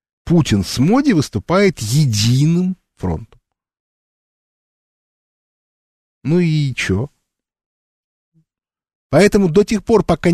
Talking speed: 80 wpm